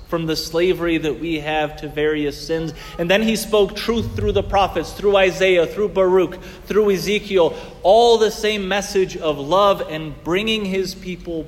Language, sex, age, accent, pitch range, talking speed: English, male, 30-49, American, 110-155 Hz, 170 wpm